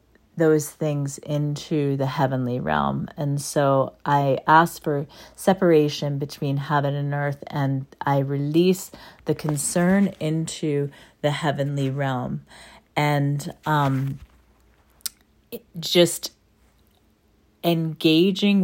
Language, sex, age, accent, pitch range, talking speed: English, female, 40-59, American, 140-160 Hz, 95 wpm